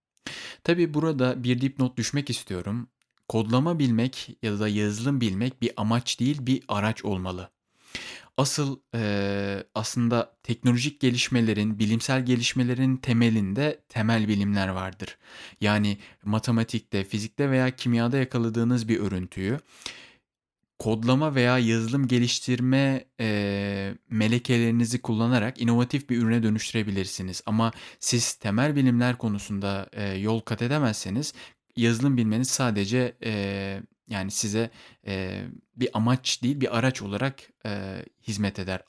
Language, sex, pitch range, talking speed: Turkish, male, 105-125 Hz, 110 wpm